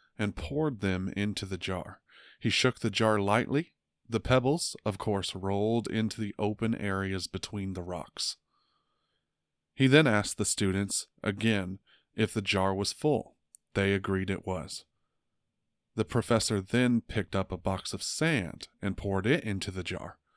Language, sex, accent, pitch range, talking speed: English, male, American, 95-110 Hz, 155 wpm